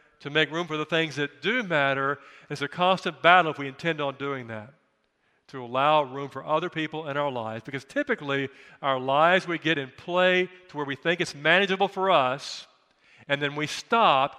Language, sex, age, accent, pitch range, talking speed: English, male, 50-69, American, 130-165 Hz, 200 wpm